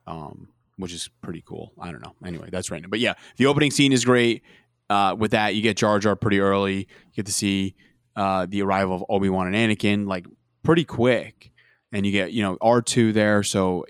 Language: English